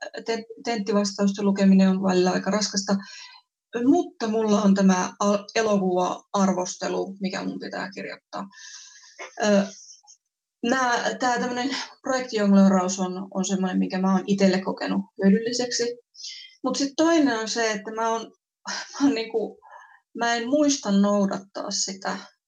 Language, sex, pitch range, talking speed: Finnish, female, 195-230 Hz, 110 wpm